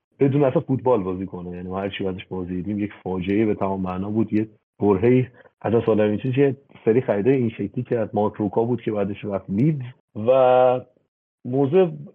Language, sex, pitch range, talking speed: Persian, male, 105-130 Hz, 180 wpm